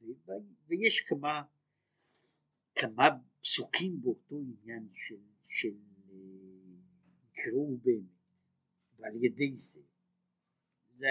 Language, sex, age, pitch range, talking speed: Hebrew, male, 60-79, 115-180 Hz, 75 wpm